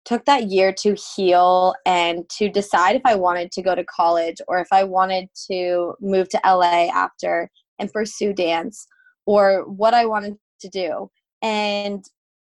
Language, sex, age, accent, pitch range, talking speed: English, female, 20-39, American, 185-220 Hz, 165 wpm